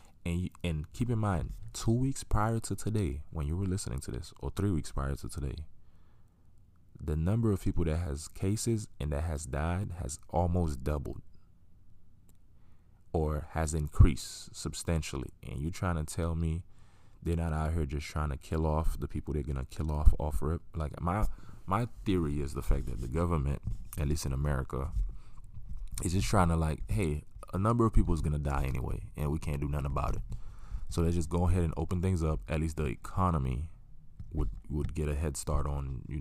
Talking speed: 200 wpm